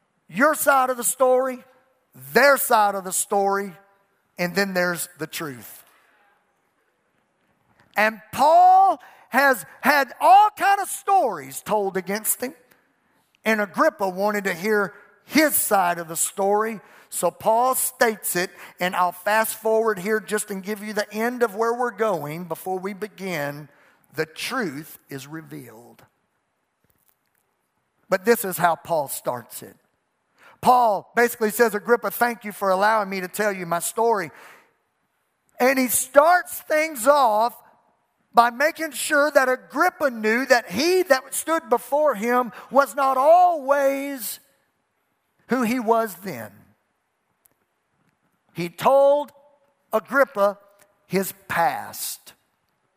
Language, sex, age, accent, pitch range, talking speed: English, male, 50-69, American, 195-270 Hz, 125 wpm